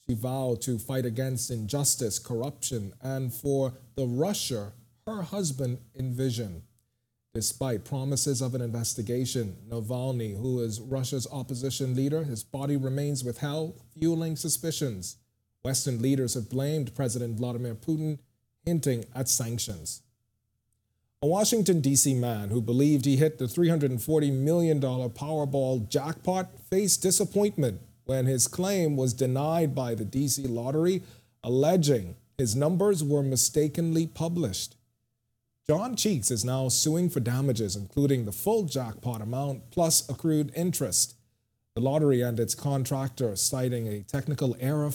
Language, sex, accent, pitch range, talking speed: English, male, American, 120-145 Hz, 125 wpm